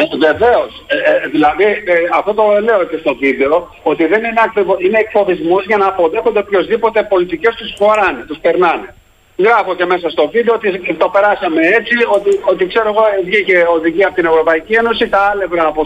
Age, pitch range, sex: 50-69, 175-230 Hz, male